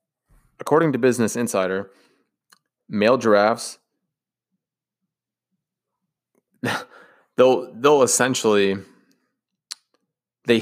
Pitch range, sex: 100-130 Hz, male